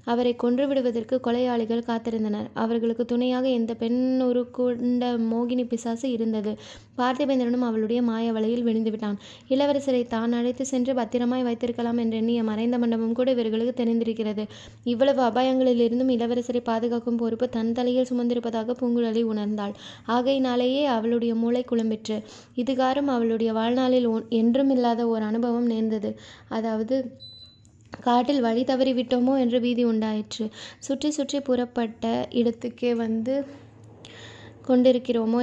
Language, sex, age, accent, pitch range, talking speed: Tamil, female, 20-39, native, 225-250 Hz, 110 wpm